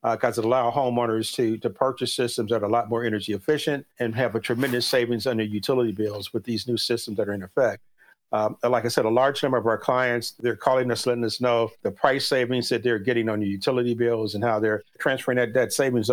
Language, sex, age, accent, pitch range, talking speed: English, male, 50-69, American, 110-125 Hz, 245 wpm